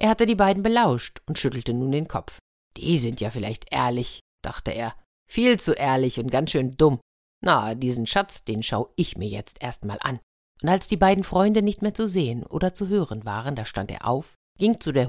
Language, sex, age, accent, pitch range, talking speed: German, female, 50-69, German, 120-180 Hz, 220 wpm